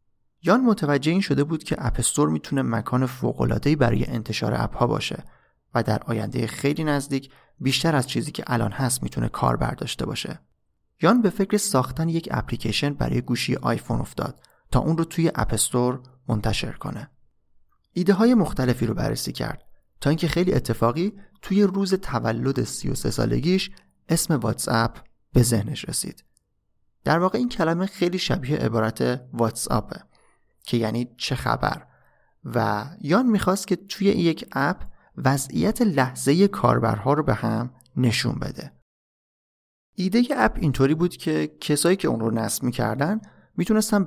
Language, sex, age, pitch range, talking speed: Persian, male, 30-49, 115-175 Hz, 145 wpm